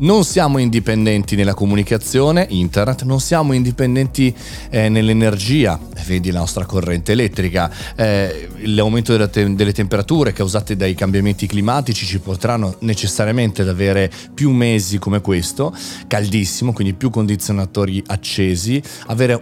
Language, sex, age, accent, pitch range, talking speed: Italian, male, 30-49, native, 95-125 Hz, 120 wpm